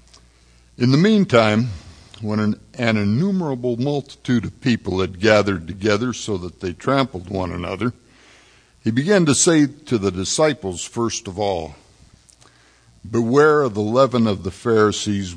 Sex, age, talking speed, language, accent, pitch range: male, 60-79, 140 wpm, English, American, 90-120 Hz